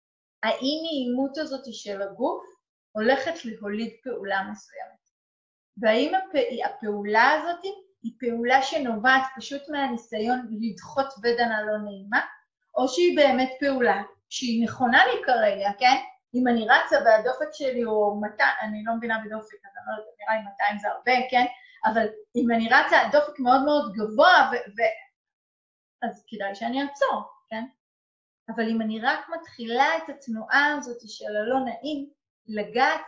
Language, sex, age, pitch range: Hebrew, female, 30-49, 215-275 Hz